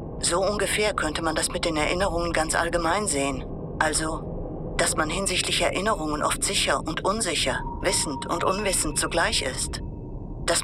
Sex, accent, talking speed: female, German, 145 wpm